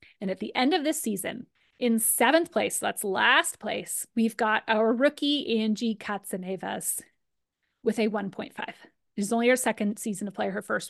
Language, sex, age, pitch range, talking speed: English, female, 30-49, 205-250 Hz, 180 wpm